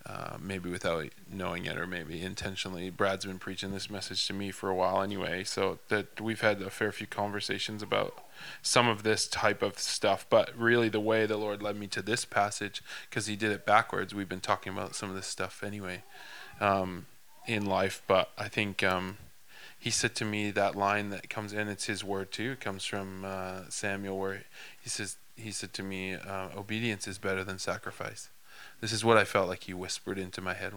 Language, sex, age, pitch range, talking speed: English, male, 20-39, 95-105 Hz, 210 wpm